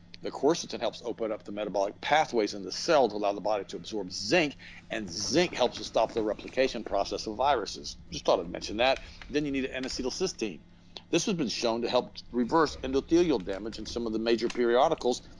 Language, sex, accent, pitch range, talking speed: English, male, American, 100-135 Hz, 205 wpm